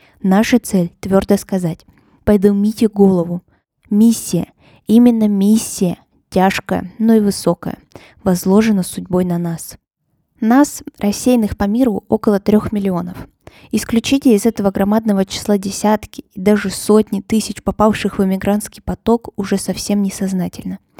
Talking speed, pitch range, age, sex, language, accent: 125 wpm, 195-225 Hz, 20-39, female, Russian, native